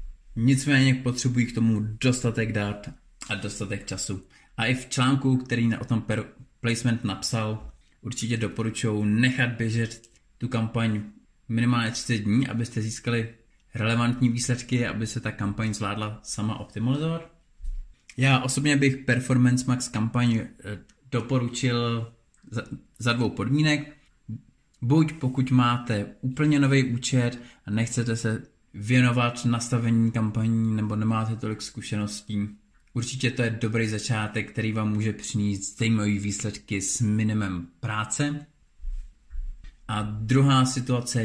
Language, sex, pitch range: Czech, male, 105-120 Hz